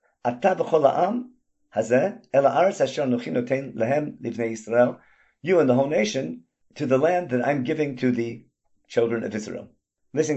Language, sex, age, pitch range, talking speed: English, male, 50-69, 115-155 Hz, 100 wpm